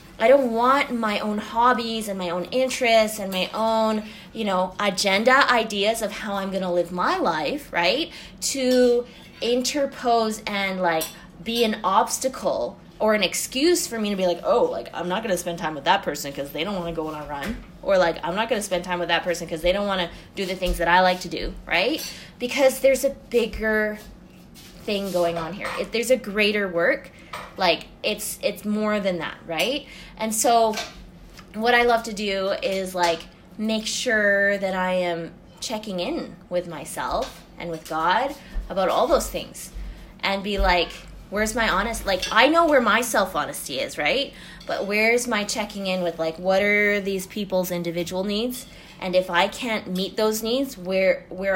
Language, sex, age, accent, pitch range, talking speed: English, female, 20-39, American, 180-225 Hz, 195 wpm